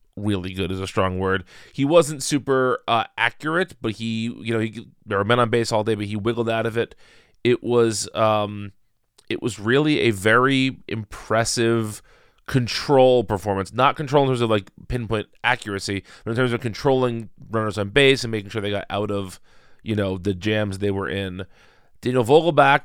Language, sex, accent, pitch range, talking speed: English, male, American, 100-120 Hz, 190 wpm